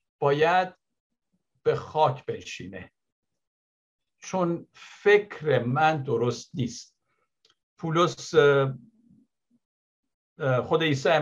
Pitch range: 130-175 Hz